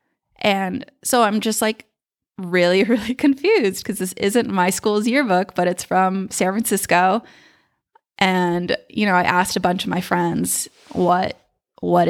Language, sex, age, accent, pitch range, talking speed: English, female, 20-39, American, 180-230 Hz, 155 wpm